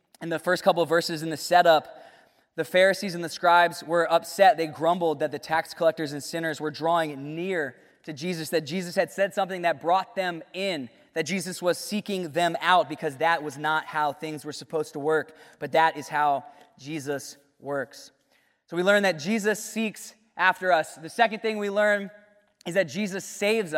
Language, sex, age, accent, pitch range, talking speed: English, male, 20-39, American, 170-210 Hz, 195 wpm